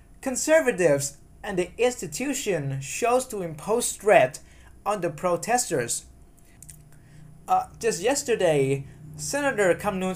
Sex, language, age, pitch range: male, Thai, 20-39, 145-205 Hz